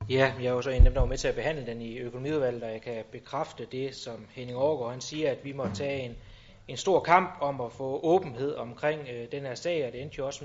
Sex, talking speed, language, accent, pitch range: male, 275 wpm, Danish, native, 120-165 Hz